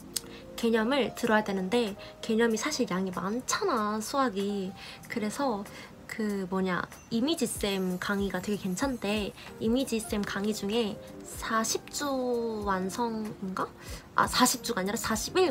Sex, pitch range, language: female, 200-255 Hz, Korean